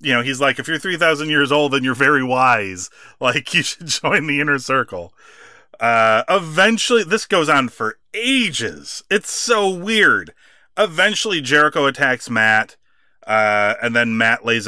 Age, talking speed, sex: 30-49, 160 wpm, male